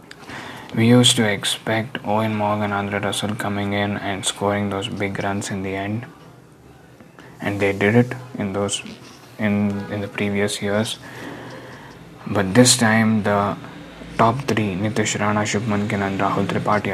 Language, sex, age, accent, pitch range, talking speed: English, male, 20-39, Indian, 100-110 Hz, 145 wpm